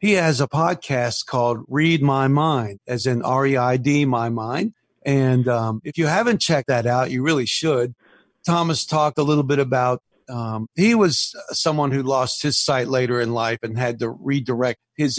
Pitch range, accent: 120-155 Hz, American